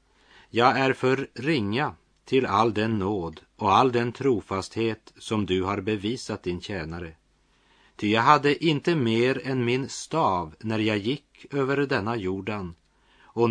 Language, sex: Swedish, male